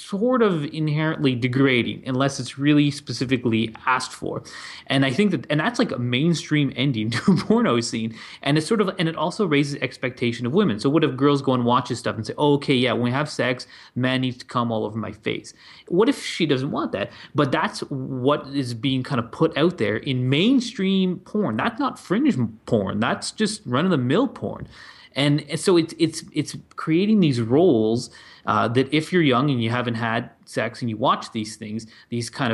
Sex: male